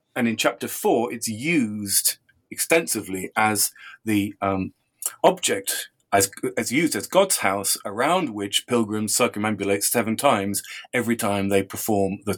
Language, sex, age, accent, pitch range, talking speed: English, male, 40-59, British, 105-140 Hz, 135 wpm